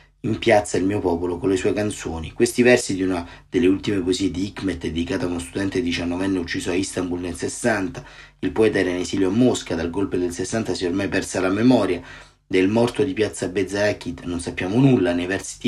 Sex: male